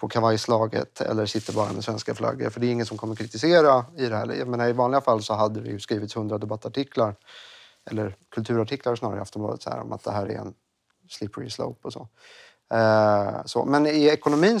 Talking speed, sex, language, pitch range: 195 wpm, male, Swedish, 110-125 Hz